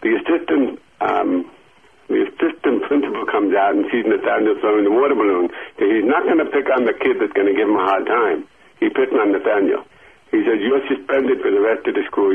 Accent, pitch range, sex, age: American, 360-400 Hz, male, 60-79